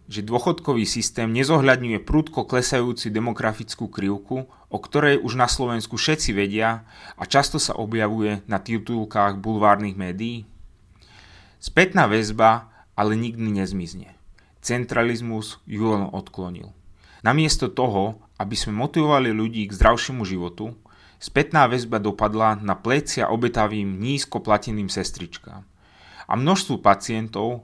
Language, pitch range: Slovak, 100-125 Hz